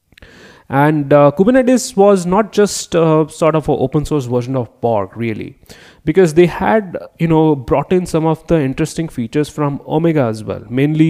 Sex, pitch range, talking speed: male, 110-150 Hz, 175 wpm